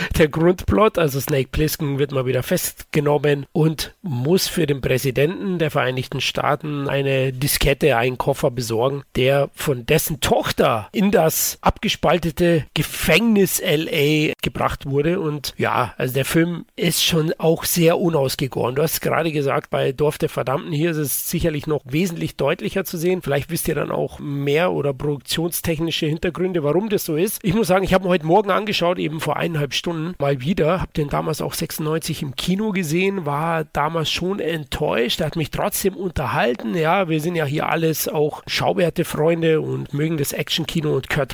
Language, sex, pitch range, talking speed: German, male, 145-175 Hz, 175 wpm